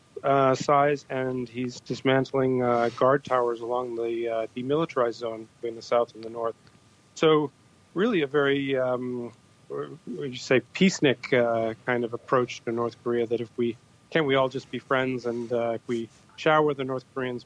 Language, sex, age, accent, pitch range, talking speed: English, male, 30-49, American, 115-135 Hz, 170 wpm